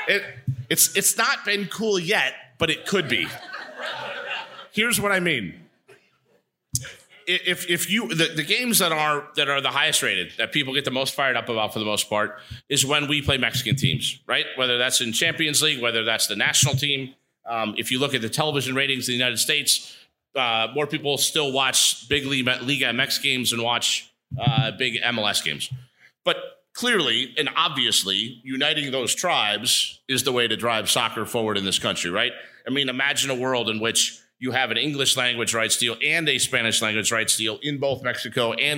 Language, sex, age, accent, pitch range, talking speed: English, male, 30-49, American, 115-150 Hz, 195 wpm